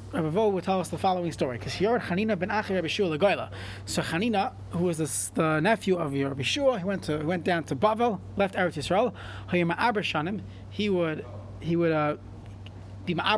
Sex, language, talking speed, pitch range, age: male, English, 200 wpm, 150-225 Hz, 30-49